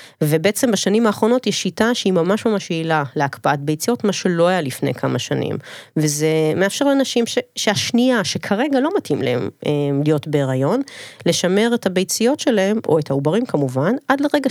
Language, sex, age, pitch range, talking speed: Hebrew, female, 30-49, 155-230 Hz, 155 wpm